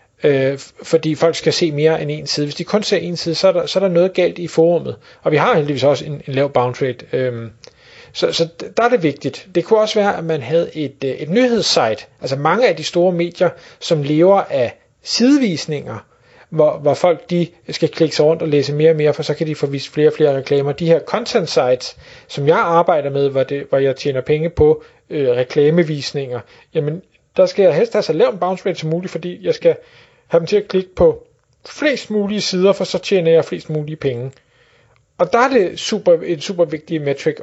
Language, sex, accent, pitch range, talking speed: Danish, male, native, 150-195 Hz, 225 wpm